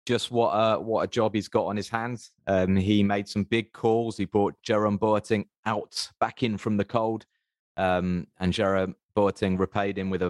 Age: 30-49